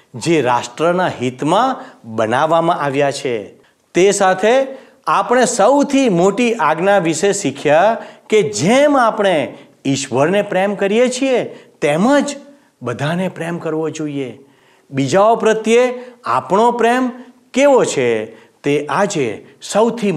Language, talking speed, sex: Gujarati, 105 wpm, male